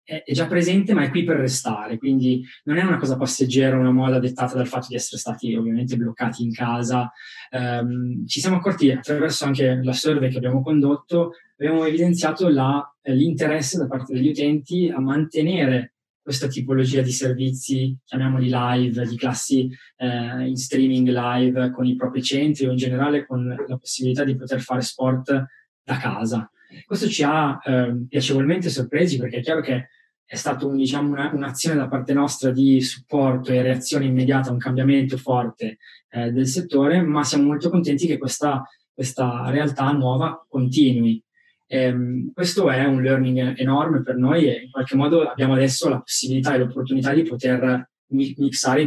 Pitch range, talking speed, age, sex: 125-145 Hz, 165 wpm, 20-39, male